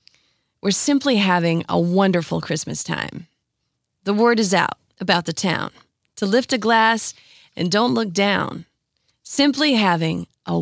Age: 30-49